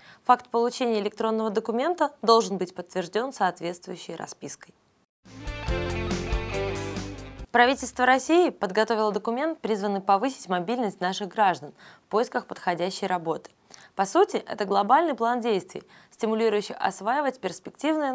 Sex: female